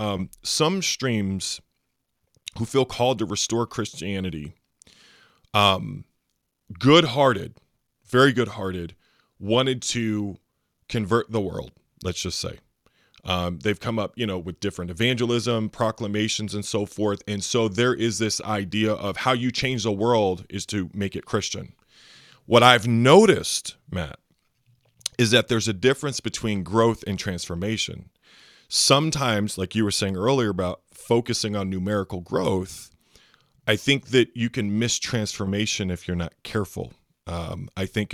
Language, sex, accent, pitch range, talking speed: English, male, American, 100-125 Hz, 145 wpm